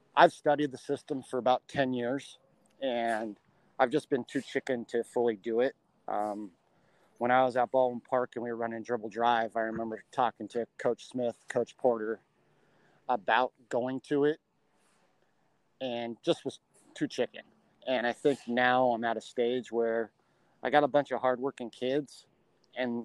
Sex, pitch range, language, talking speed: male, 115-135 Hz, English, 170 wpm